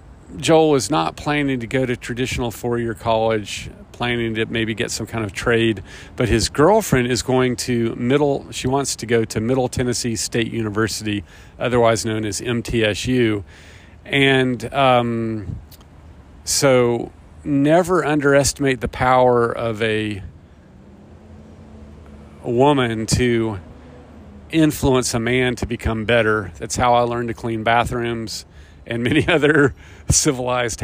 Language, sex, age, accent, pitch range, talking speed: English, male, 40-59, American, 100-130 Hz, 130 wpm